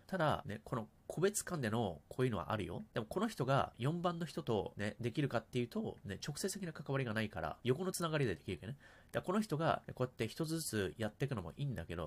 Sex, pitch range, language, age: male, 105-150 Hz, Japanese, 30-49